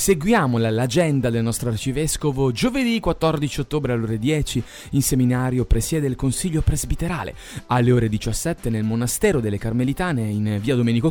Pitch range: 115-155 Hz